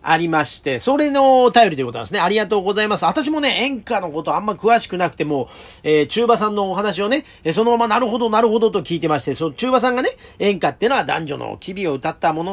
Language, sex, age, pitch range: Japanese, male, 40-59, 150-220 Hz